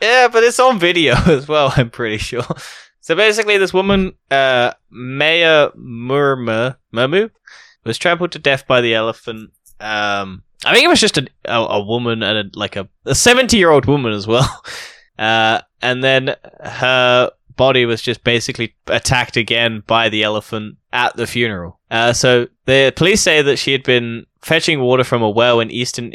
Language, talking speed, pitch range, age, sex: English, 170 wpm, 110-135 Hz, 10-29, male